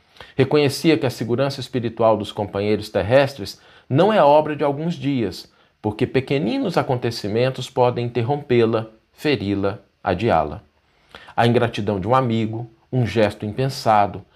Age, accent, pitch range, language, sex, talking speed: 40-59, Brazilian, 105-150 Hz, Portuguese, male, 125 wpm